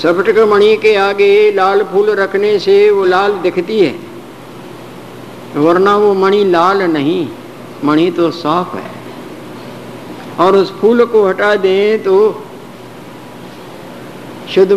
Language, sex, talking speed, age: Hindi, male, 120 wpm, 50-69